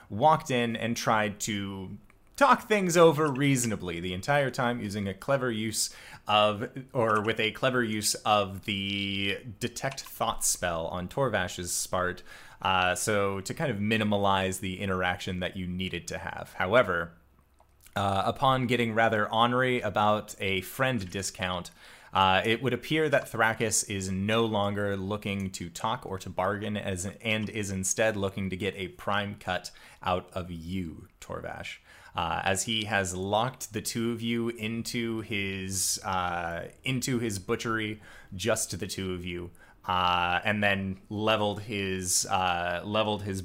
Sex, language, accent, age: male, English, American, 30-49